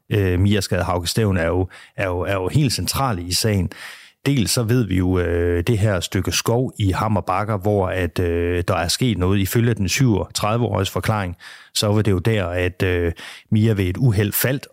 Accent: native